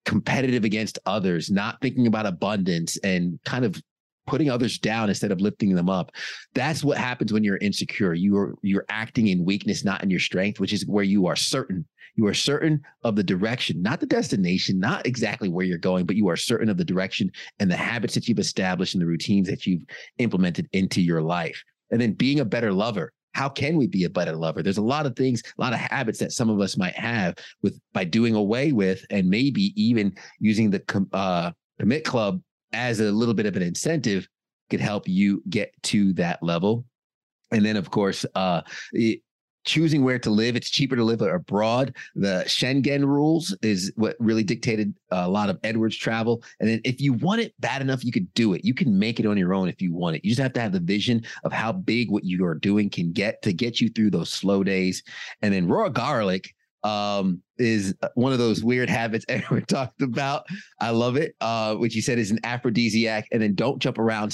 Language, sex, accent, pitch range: English, male, American, 95-125 Hz